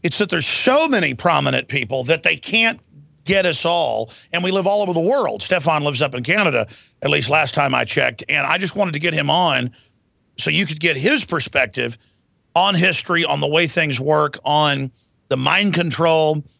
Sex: male